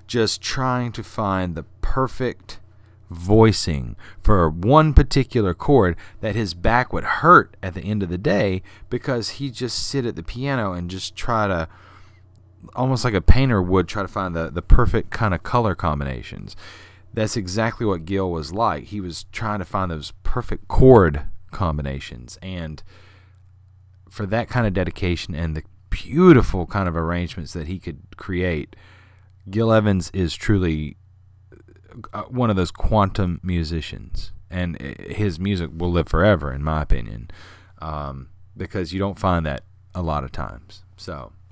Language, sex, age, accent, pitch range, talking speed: English, male, 40-59, American, 85-105 Hz, 155 wpm